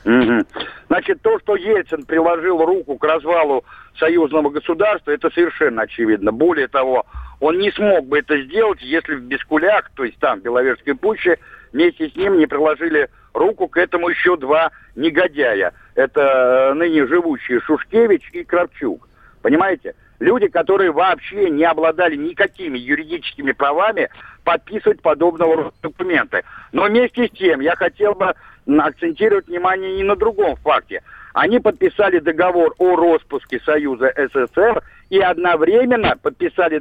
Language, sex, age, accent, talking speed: Russian, male, 60-79, native, 135 wpm